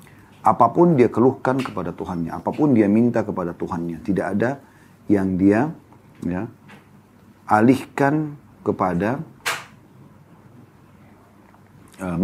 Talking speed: 90 wpm